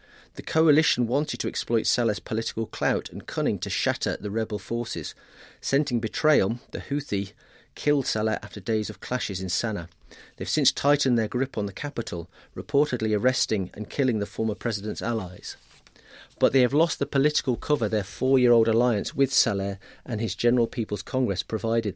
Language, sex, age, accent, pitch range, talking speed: English, male, 40-59, British, 105-130 Hz, 170 wpm